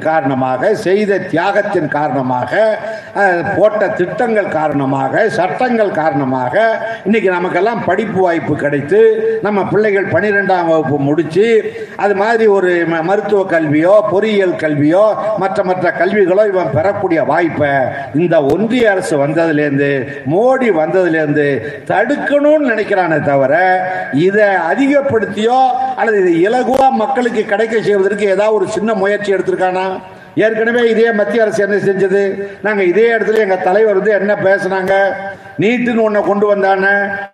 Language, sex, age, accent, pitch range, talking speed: Tamil, male, 60-79, native, 180-220 Hz, 95 wpm